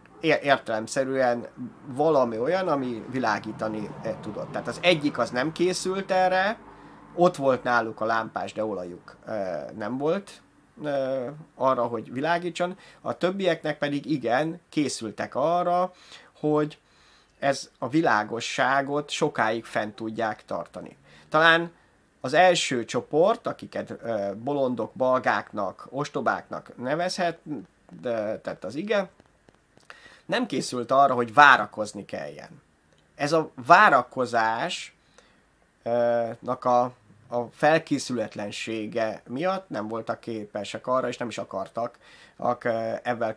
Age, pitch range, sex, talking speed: 30-49, 115-160 Hz, male, 100 wpm